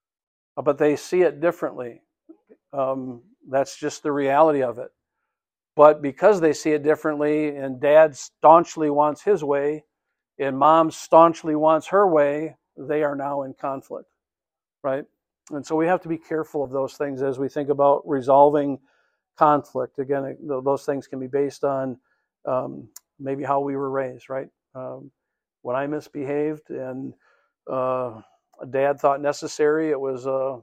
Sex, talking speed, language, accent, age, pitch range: male, 150 wpm, English, American, 50-69, 135-155 Hz